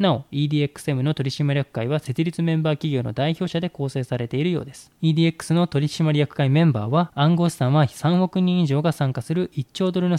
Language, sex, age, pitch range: Japanese, male, 20-39, 130-170 Hz